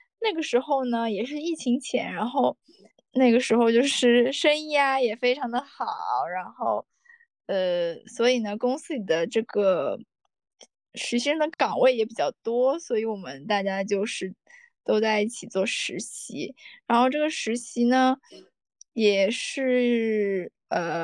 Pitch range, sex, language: 220-275 Hz, female, Chinese